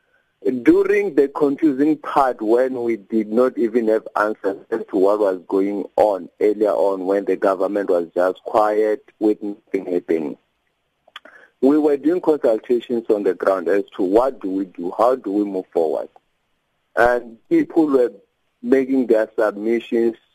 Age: 50-69